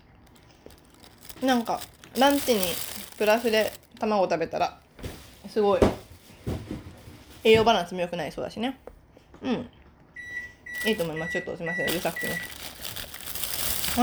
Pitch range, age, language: 175-250 Hz, 20-39, Japanese